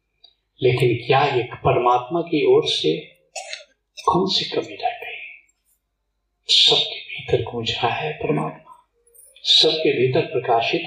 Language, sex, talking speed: Hindi, male, 110 wpm